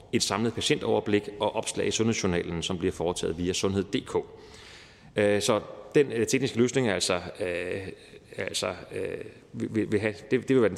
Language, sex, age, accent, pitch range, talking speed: Danish, male, 30-49, native, 100-130 Hz, 140 wpm